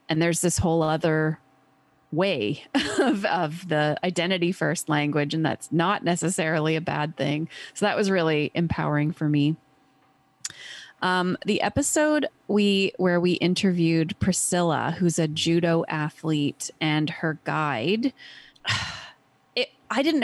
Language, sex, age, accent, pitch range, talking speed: English, female, 30-49, American, 155-190 Hz, 125 wpm